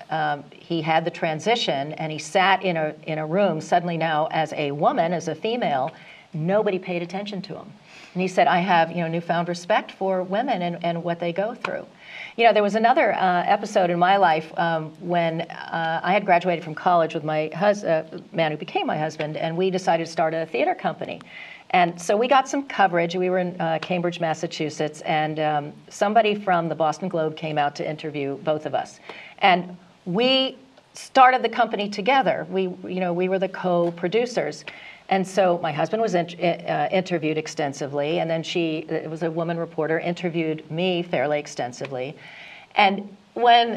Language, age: English, 40-59